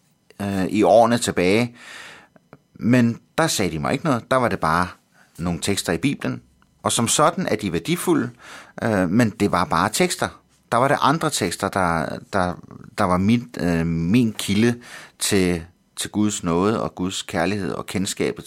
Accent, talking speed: native, 165 wpm